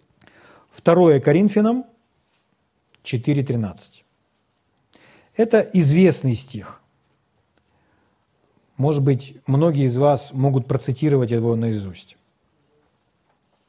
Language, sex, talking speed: Russian, male, 65 wpm